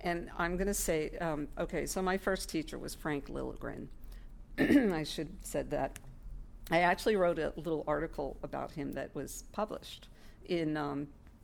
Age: 50-69